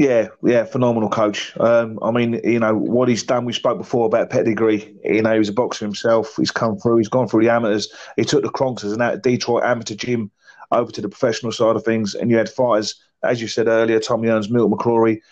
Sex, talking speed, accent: male, 235 wpm, British